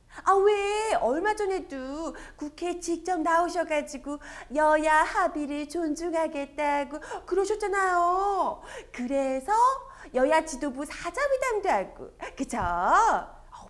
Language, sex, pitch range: Korean, female, 290-385 Hz